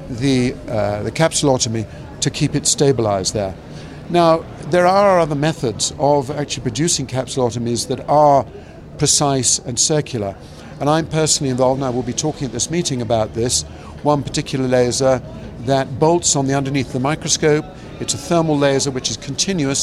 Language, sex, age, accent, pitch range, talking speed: English, male, 50-69, British, 125-150 Hz, 165 wpm